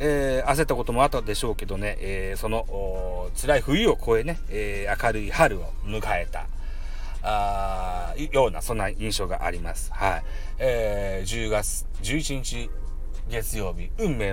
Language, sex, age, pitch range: Japanese, male, 40-59, 95-135 Hz